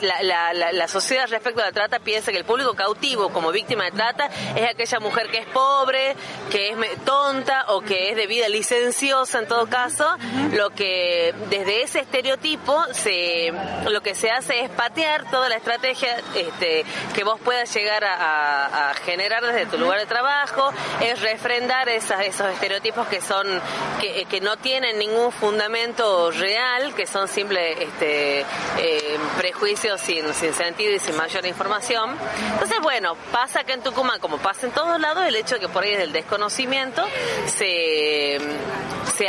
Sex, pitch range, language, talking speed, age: female, 200-260 Hz, Spanish, 165 wpm, 30-49